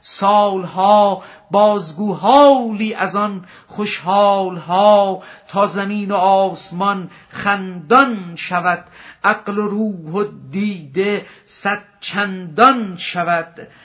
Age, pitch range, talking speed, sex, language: 50-69, 195-240 Hz, 85 wpm, male, Persian